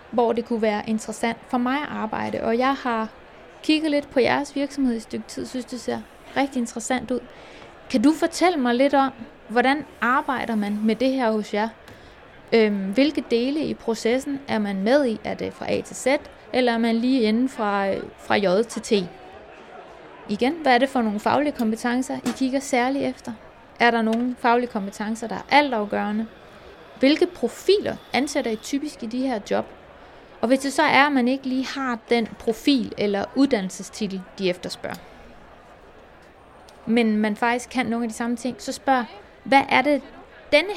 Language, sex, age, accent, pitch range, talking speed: Danish, female, 20-39, native, 220-265 Hz, 180 wpm